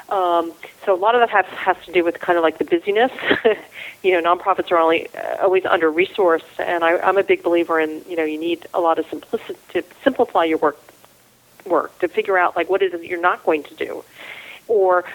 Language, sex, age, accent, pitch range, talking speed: English, female, 40-59, American, 165-205 Hz, 235 wpm